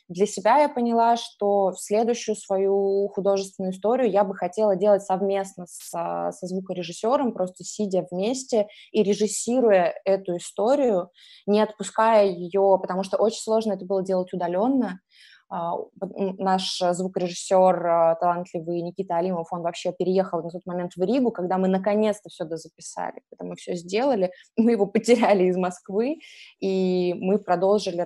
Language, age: Russian, 20-39